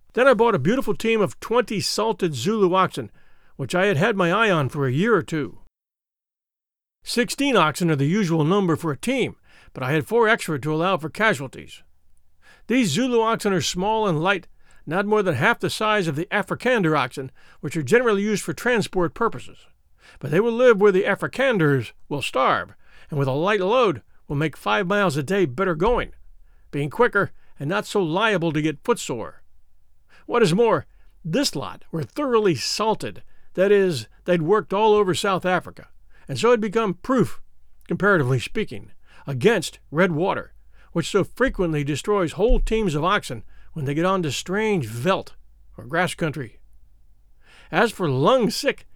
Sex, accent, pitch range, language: male, American, 145-215 Hz, English